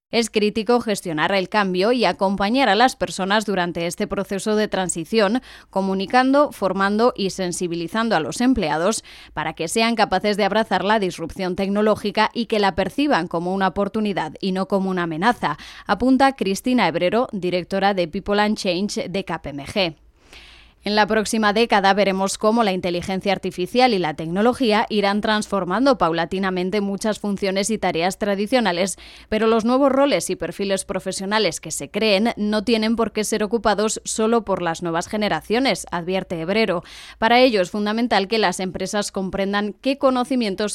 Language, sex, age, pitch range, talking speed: Spanish, female, 20-39, 185-220 Hz, 155 wpm